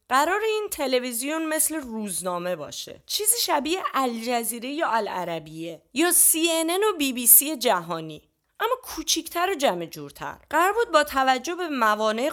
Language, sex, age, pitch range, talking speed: Persian, female, 30-49, 180-275 Hz, 130 wpm